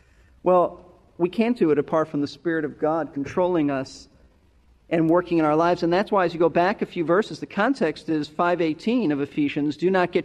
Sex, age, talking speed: male, 40-59, 215 wpm